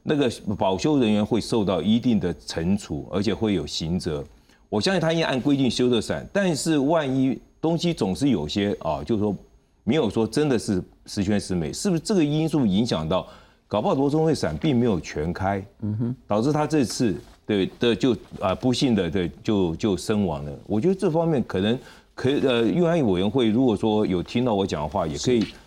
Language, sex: Chinese, male